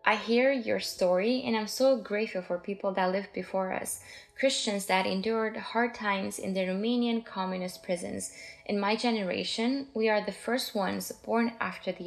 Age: 20-39